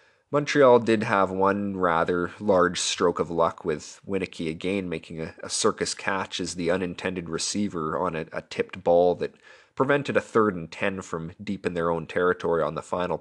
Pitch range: 85-105 Hz